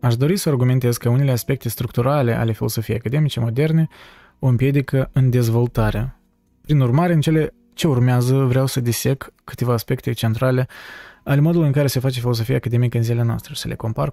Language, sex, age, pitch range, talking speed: Romanian, male, 20-39, 115-140 Hz, 180 wpm